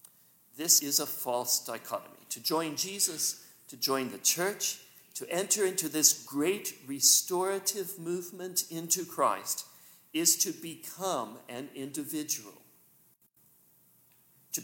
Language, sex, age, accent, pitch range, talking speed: English, male, 50-69, American, 130-185 Hz, 110 wpm